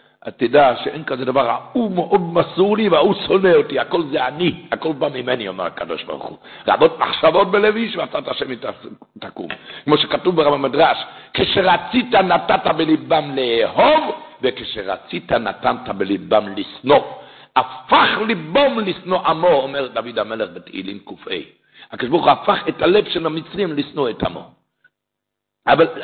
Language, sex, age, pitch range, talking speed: Hebrew, male, 60-79, 155-210 Hz, 145 wpm